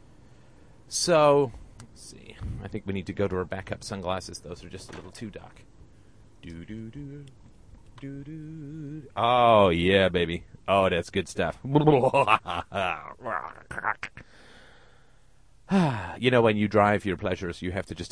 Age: 30-49